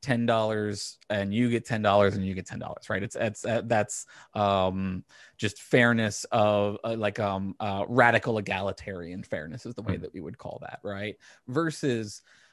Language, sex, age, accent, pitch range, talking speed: English, male, 20-39, American, 105-120 Hz, 180 wpm